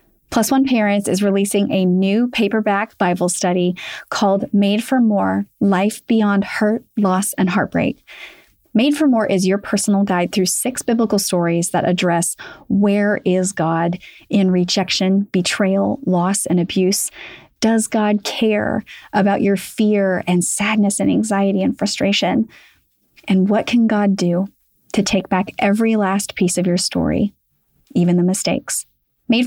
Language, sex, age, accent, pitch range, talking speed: English, female, 30-49, American, 185-220 Hz, 145 wpm